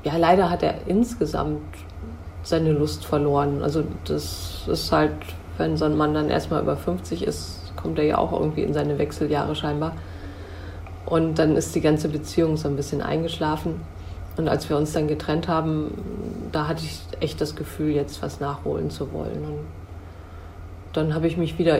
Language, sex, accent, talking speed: German, female, German, 175 wpm